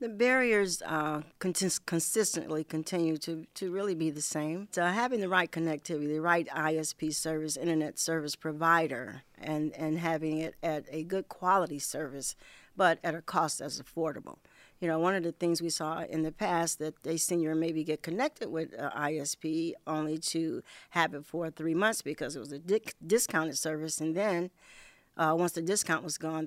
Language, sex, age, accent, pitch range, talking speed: English, female, 50-69, American, 155-185 Hz, 180 wpm